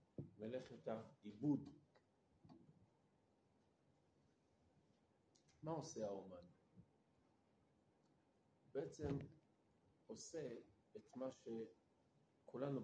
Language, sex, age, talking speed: Hebrew, male, 50-69, 45 wpm